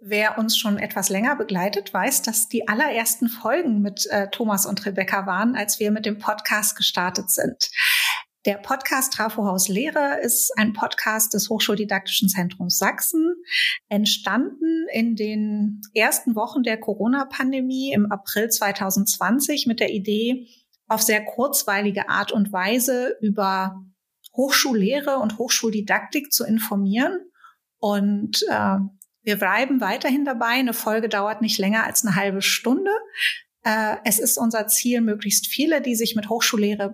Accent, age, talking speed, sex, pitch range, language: German, 30-49, 140 wpm, female, 200-250 Hz, German